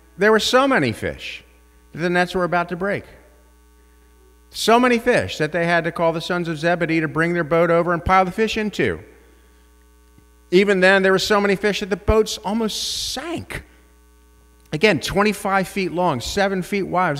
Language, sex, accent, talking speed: English, male, American, 185 wpm